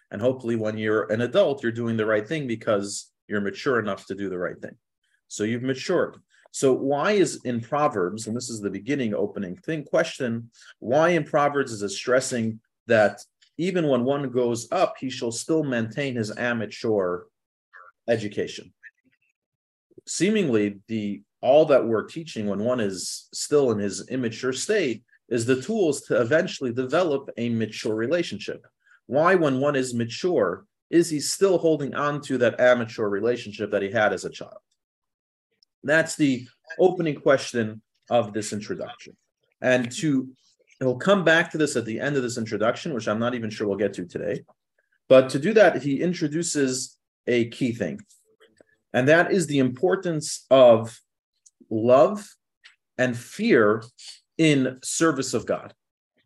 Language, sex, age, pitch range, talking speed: English, male, 40-59, 110-145 Hz, 160 wpm